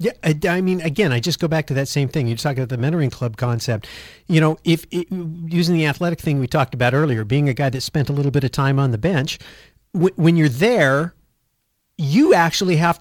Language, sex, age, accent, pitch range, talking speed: English, male, 50-69, American, 130-160 Hz, 230 wpm